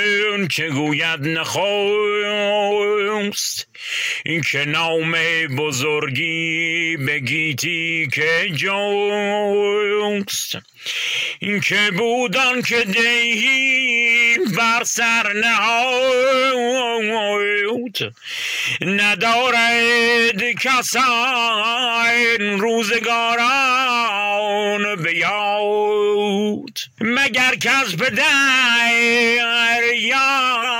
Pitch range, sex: 205-240 Hz, male